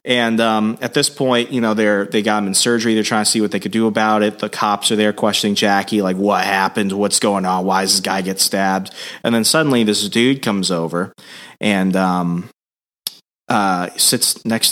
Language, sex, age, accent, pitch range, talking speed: English, male, 30-49, American, 95-115 Hz, 215 wpm